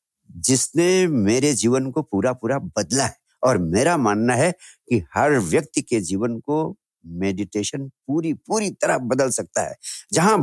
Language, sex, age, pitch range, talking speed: Hindi, male, 60-79, 110-155 Hz, 150 wpm